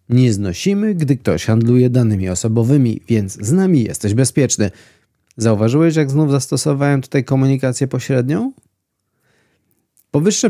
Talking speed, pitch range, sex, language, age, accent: 115 wpm, 105-140 Hz, male, Polish, 30-49, native